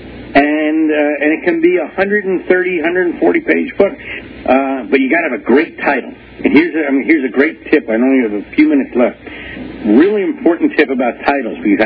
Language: English